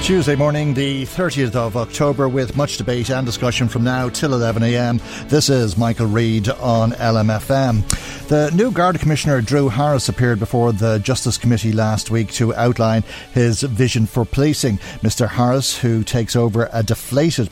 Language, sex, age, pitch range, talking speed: English, male, 60-79, 105-125 Hz, 160 wpm